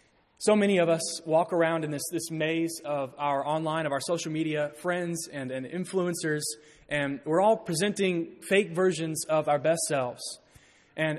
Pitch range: 145-180 Hz